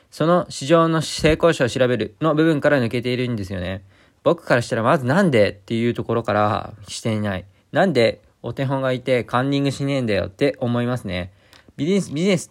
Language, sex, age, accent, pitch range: Japanese, male, 20-39, native, 105-140 Hz